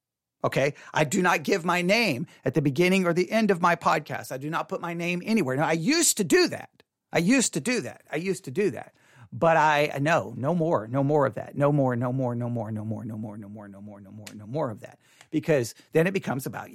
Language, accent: English, American